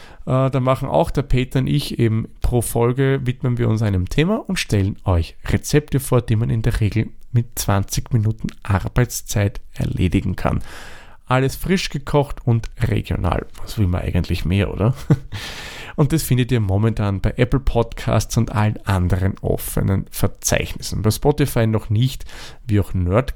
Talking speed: 160 wpm